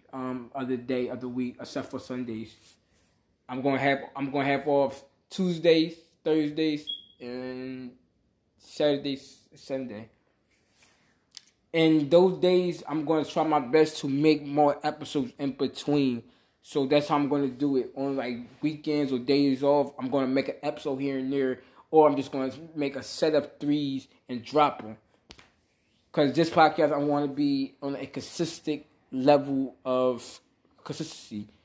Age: 20-39